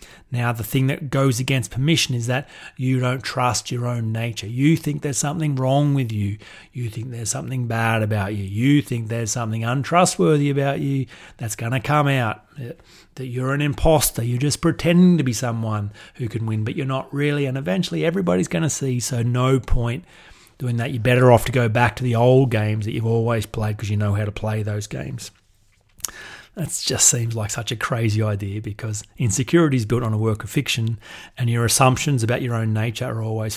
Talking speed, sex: 210 wpm, male